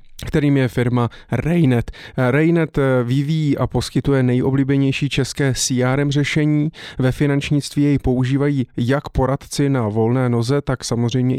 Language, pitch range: Czech, 120-140 Hz